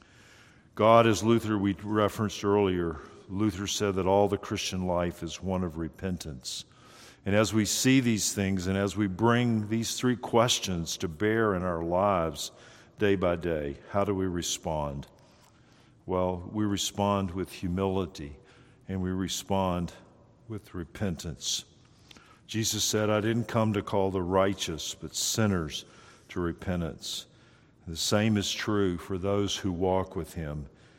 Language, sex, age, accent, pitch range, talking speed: English, male, 50-69, American, 90-115 Hz, 145 wpm